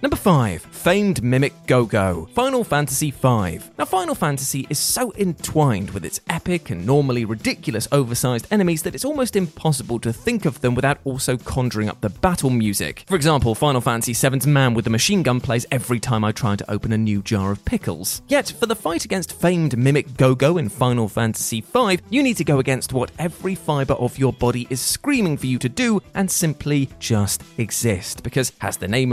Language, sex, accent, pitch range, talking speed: English, male, British, 120-175 Hz, 200 wpm